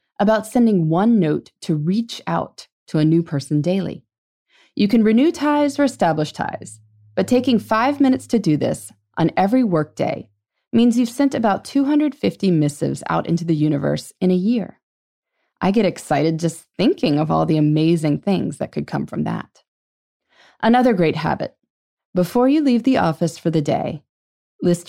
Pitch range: 155-235 Hz